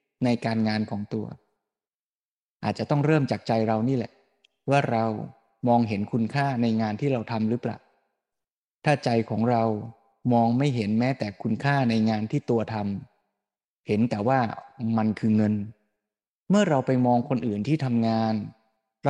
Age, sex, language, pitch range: 20-39, male, Thai, 110-135 Hz